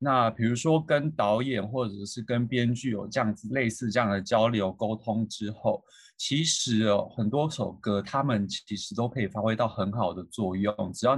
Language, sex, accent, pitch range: Chinese, male, native, 105-140 Hz